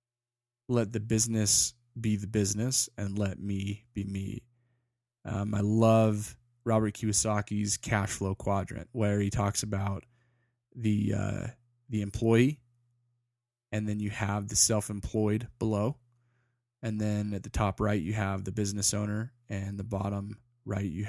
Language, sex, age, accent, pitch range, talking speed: English, male, 20-39, American, 100-120 Hz, 145 wpm